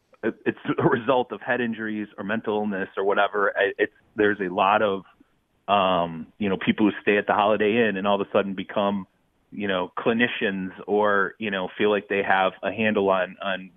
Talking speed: 195 wpm